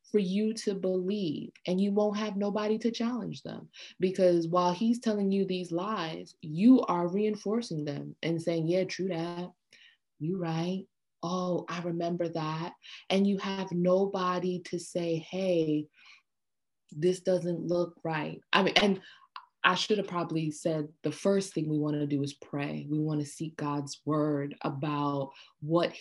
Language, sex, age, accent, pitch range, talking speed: English, female, 20-39, American, 155-195 Hz, 160 wpm